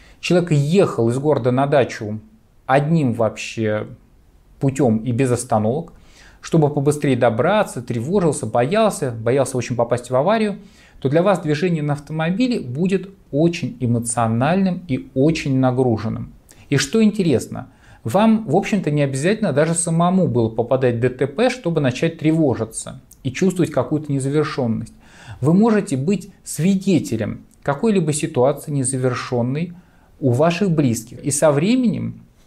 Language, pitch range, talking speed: Russian, 120-170 Hz, 125 wpm